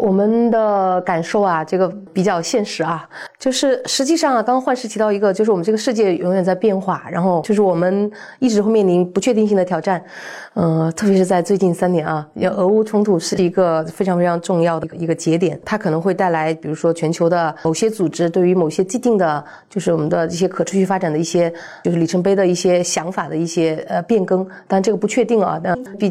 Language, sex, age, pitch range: Chinese, female, 30-49, 165-200 Hz